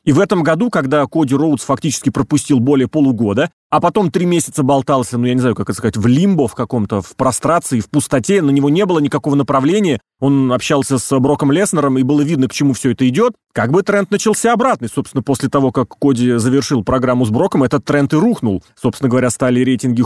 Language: Russian